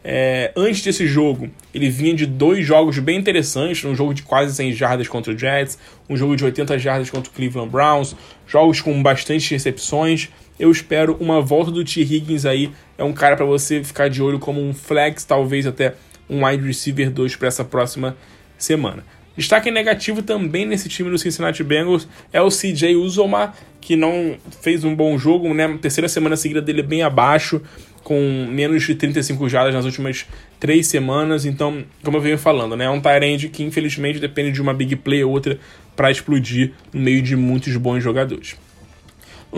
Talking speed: 190 wpm